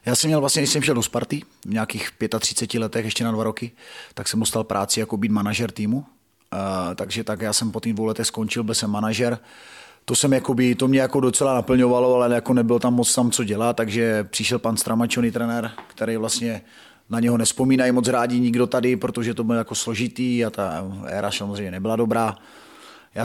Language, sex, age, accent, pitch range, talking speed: Czech, male, 30-49, native, 105-120 Hz, 205 wpm